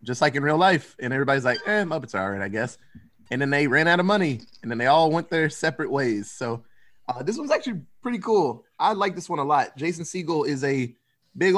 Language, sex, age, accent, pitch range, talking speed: English, male, 20-39, American, 125-180 Hz, 250 wpm